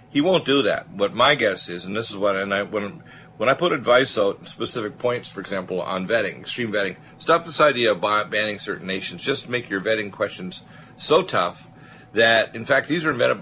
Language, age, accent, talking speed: English, 50-69, American, 215 wpm